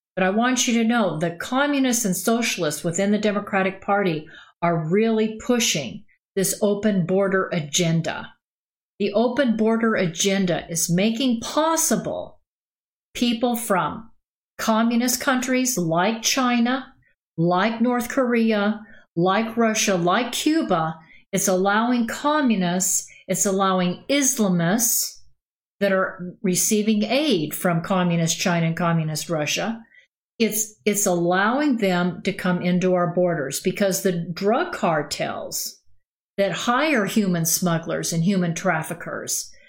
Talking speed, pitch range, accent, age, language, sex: 115 wpm, 175-225 Hz, American, 50-69, English, female